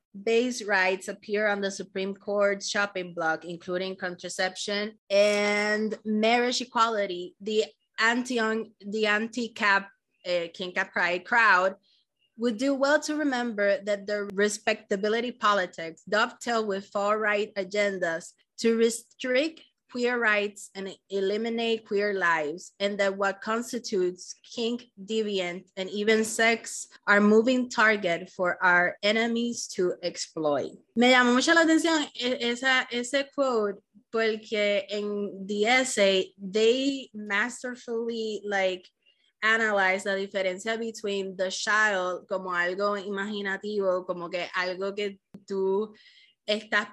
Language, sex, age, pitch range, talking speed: Spanish, female, 20-39, 195-225 Hz, 115 wpm